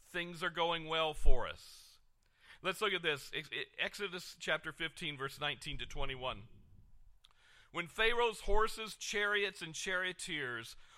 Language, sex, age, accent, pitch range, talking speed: English, male, 50-69, American, 140-195 Hz, 125 wpm